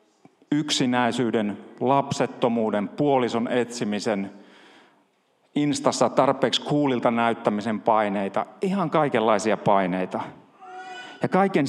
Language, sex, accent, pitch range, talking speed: Finnish, male, native, 105-150 Hz, 70 wpm